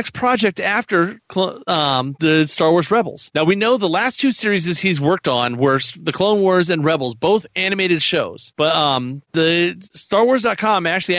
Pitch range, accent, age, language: 155-200 Hz, American, 40-59, English